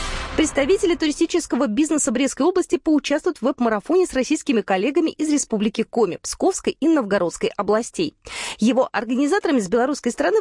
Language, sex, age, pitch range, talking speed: Russian, female, 20-39, 210-320 Hz, 135 wpm